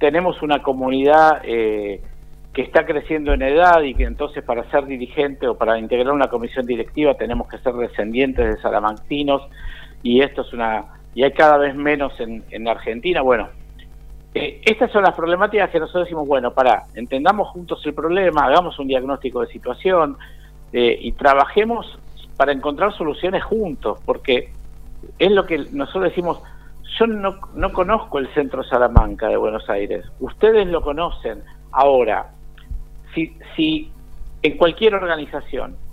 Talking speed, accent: 150 wpm, Argentinian